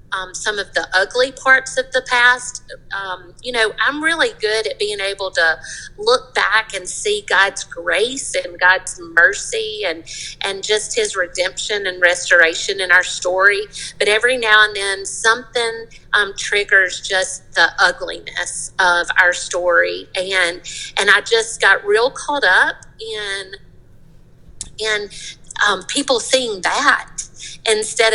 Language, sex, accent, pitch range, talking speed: English, female, American, 190-270 Hz, 145 wpm